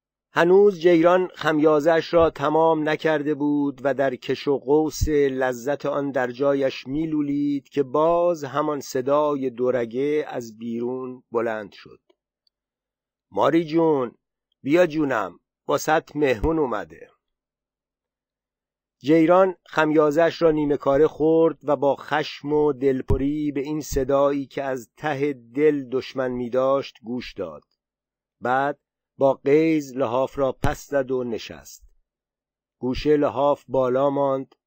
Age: 50-69